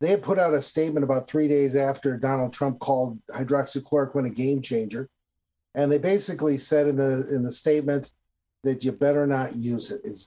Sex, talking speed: male, 185 wpm